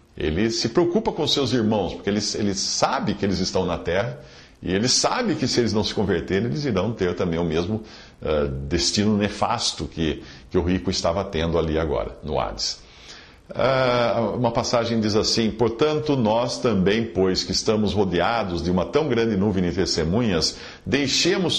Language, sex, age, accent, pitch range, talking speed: English, male, 50-69, Brazilian, 95-130 Hz, 170 wpm